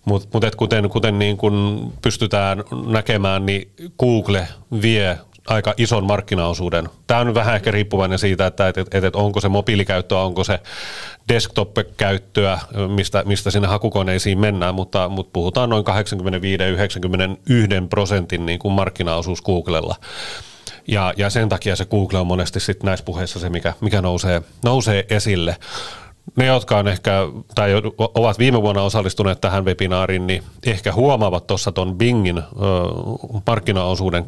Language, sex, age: Finnish, male, 30-49